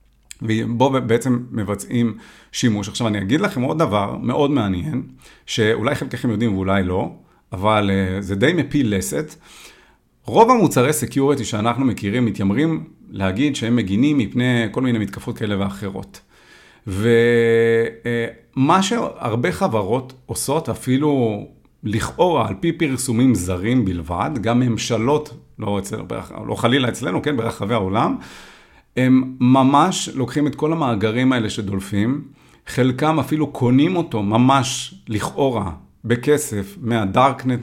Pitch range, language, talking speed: 110-135 Hz, Hebrew, 120 wpm